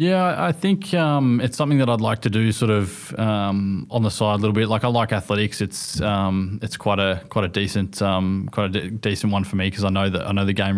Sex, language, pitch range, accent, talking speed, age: male, English, 95-110 Hz, Australian, 265 wpm, 20-39